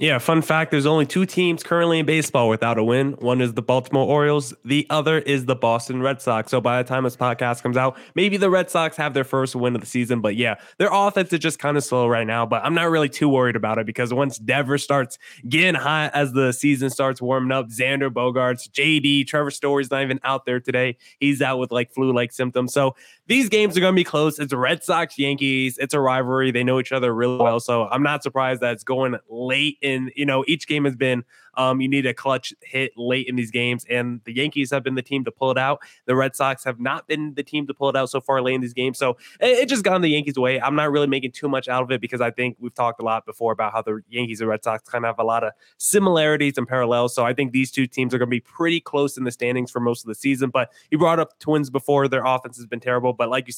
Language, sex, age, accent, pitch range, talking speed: English, male, 20-39, American, 125-145 Hz, 275 wpm